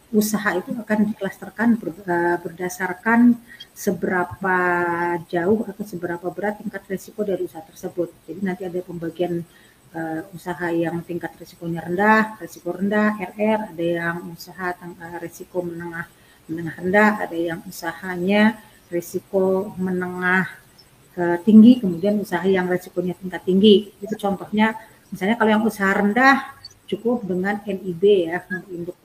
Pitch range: 170-195 Hz